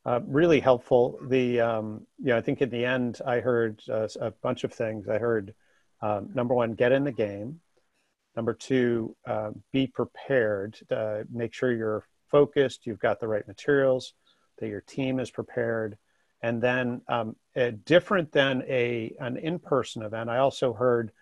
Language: English